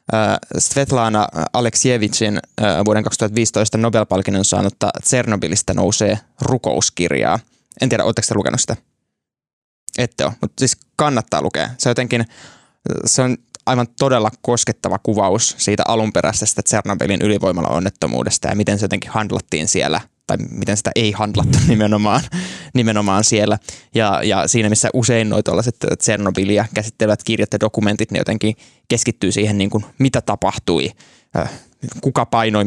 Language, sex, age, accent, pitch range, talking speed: Finnish, male, 20-39, native, 100-120 Hz, 125 wpm